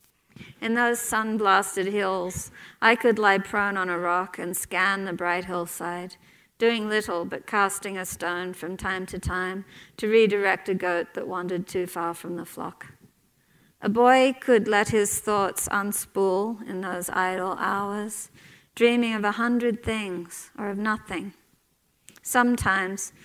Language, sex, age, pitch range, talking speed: English, female, 50-69, 185-215 Hz, 145 wpm